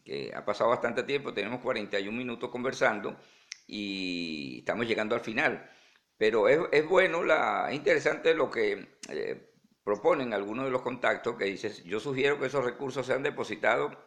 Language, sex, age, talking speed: Spanish, male, 50-69, 160 wpm